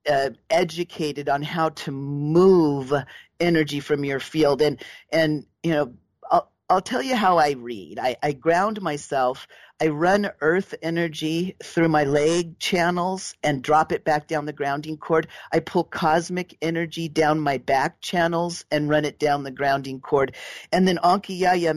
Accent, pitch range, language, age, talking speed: American, 145-170 Hz, English, 40-59, 165 wpm